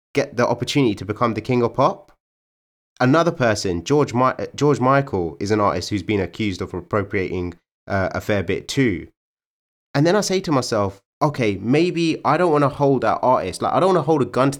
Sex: male